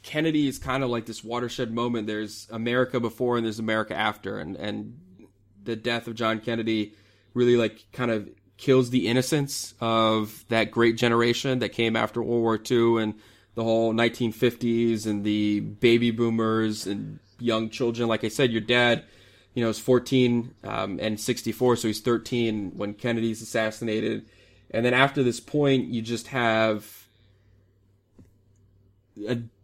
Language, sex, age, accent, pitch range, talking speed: English, male, 20-39, American, 105-125 Hz, 155 wpm